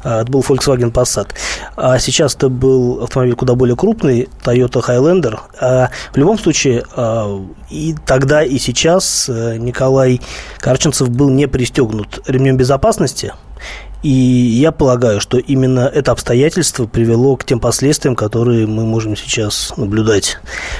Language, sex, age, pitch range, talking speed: Russian, male, 20-39, 120-145 Hz, 130 wpm